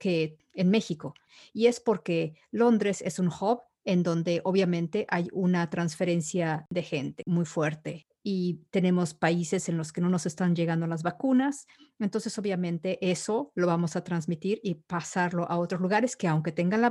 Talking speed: 170 wpm